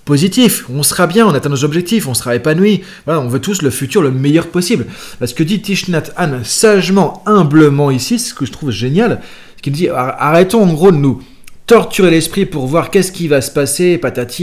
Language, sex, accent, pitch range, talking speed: French, male, French, 135-190 Hz, 215 wpm